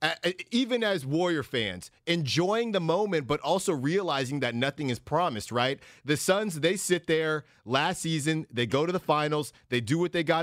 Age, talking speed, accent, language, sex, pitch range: 30-49, 185 wpm, American, English, male, 135-170 Hz